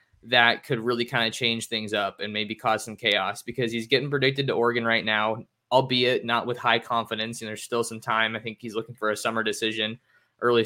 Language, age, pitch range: English, 20-39, 110-130 Hz